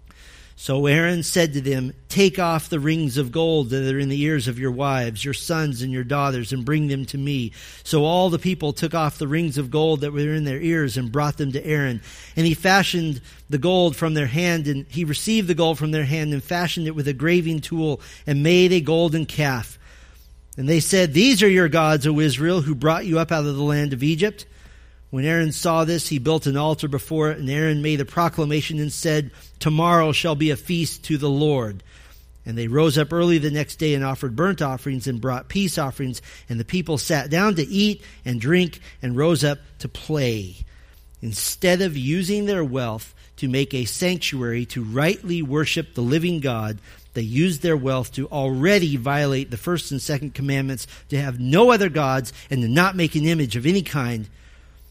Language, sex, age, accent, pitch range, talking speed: English, male, 40-59, American, 130-165 Hz, 210 wpm